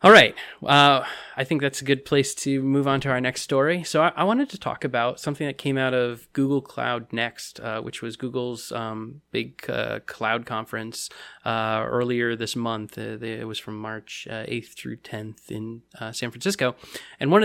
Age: 20-39